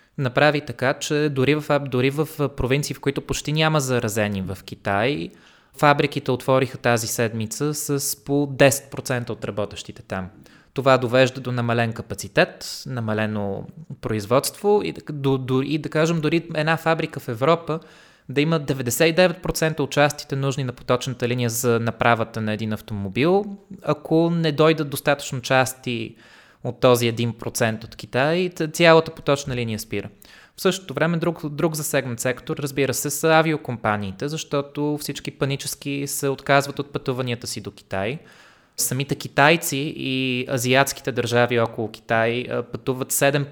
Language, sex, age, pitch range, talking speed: Bulgarian, male, 20-39, 120-150 Hz, 135 wpm